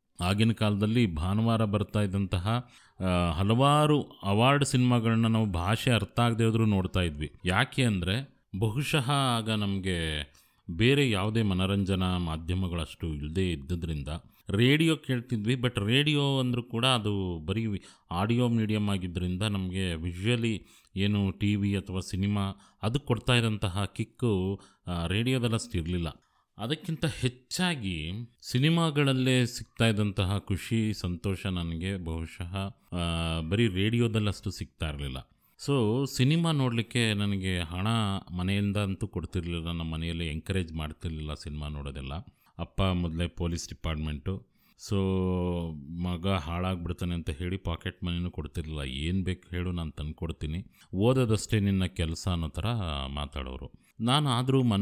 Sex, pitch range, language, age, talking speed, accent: male, 85-115 Hz, English, 30-49, 85 wpm, Indian